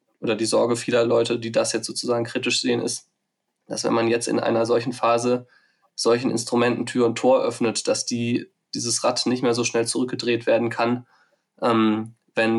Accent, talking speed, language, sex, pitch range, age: German, 185 wpm, German, male, 115-120 Hz, 20-39